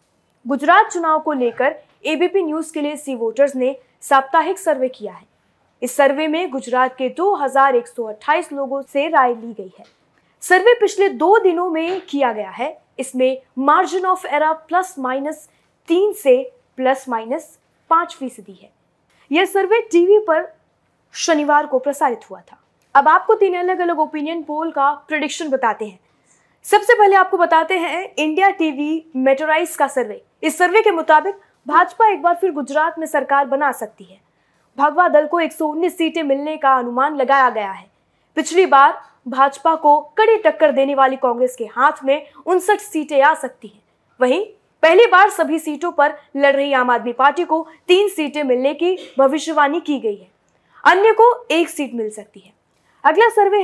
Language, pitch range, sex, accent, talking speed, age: Hindi, 270-350 Hz, female, native, 150 wpm, 20-39